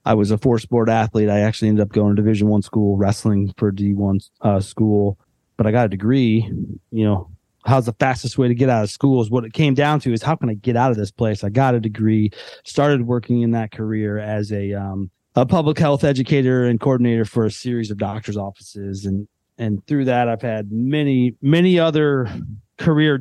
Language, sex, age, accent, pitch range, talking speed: English, male, 30-49, American, 110-135 Hz, 220 wpm